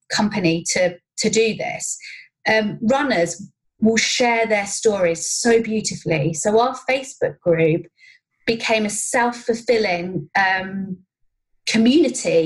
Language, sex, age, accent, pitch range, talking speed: English, female, 30-49, British, 195-245 Hz, 105 wpm